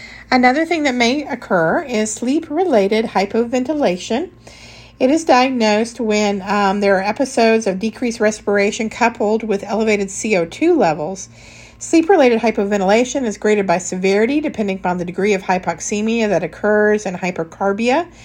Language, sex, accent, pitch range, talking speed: English, female, American, 195-250 Hz, 130 wpm